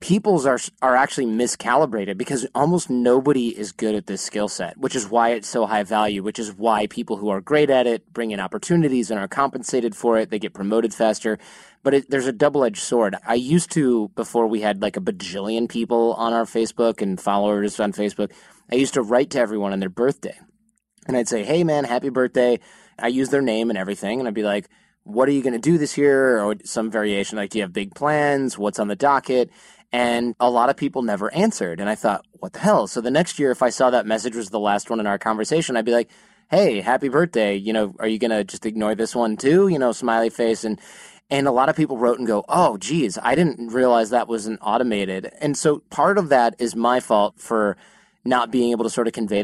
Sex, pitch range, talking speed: male, 110-135 Hz, 235 wpm